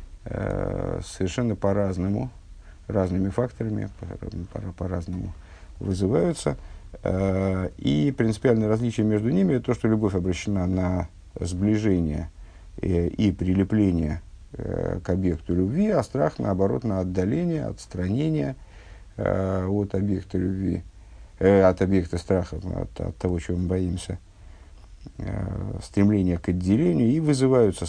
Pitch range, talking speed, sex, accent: 85-100 Hz, 105 wpm, male, native